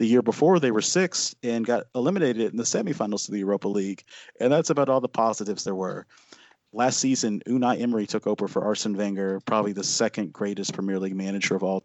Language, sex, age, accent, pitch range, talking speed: English, male, 30-49, American, 100-115 Hz, 215 wpm